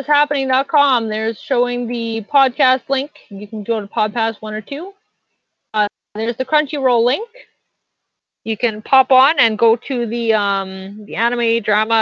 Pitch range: 215-265 Hz